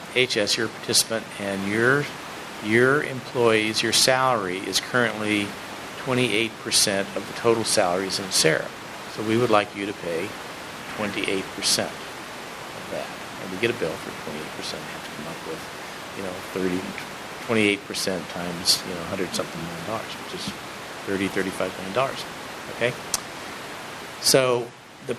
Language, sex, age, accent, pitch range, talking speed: English, male, 50-69, American, 100-120 Hz, 150 wpm